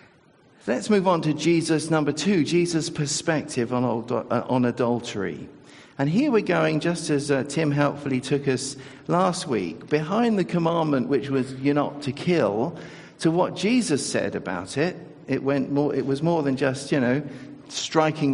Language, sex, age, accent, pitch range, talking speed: English, male, 50-69, British, 115-170 Hz, 165 wpm